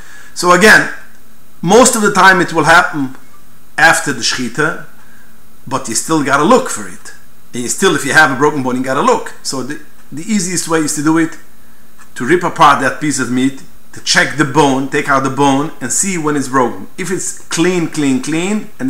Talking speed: 215 wpm